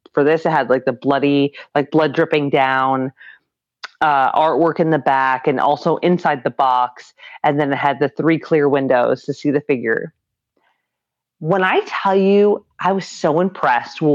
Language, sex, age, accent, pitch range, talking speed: English, female, 30-49, American, 145-200 Hz, 180 wpm